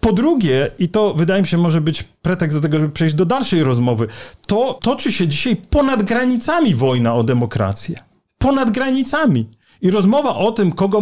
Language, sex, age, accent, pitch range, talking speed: Polish, male, 40-59, native, 155-210 Hz, 180 wpm